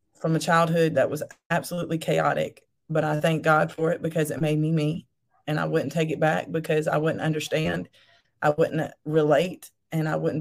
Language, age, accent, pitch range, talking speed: English, 20-39, American, 150-165 Hz, 195 wpm